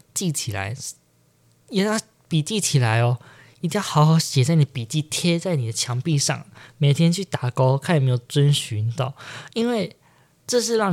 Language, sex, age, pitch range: Chinese, male, 20-39, 125-160 Hz